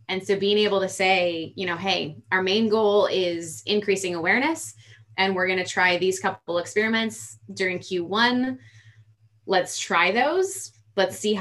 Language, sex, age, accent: English, female, 20-39, American